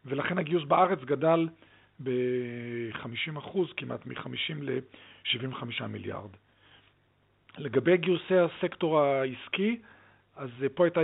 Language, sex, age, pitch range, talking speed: Hebrew, male, 40-59, 120-165 Hz, 85 wpm